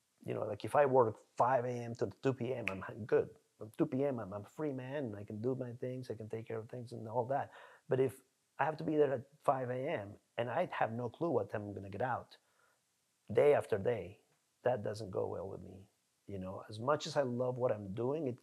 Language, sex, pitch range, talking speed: English, male, 105-130 Hz, 250 wpm